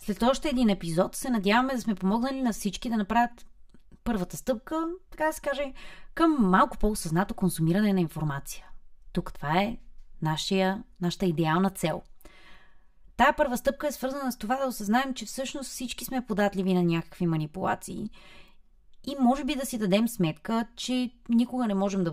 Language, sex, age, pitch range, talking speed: Bulgarian, female, 20-39, 175-235 Hz, 165 wpm